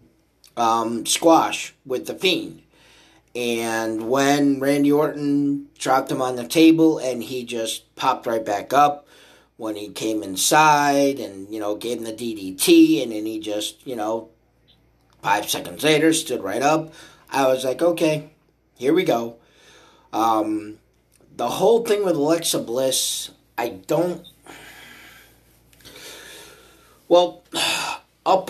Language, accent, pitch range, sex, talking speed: English, American, 115-155 Hz, male, 130 wpm